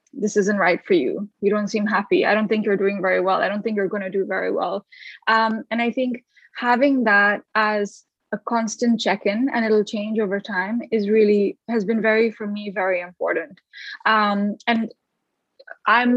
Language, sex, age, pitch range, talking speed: English, female, 10-29, 200-230 Hz, 195 wpm